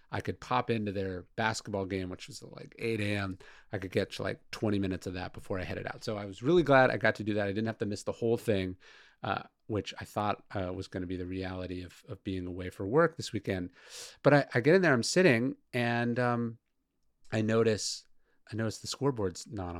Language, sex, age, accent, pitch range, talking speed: English, male, 30-49, American, 95-120 Hz, 235 wpm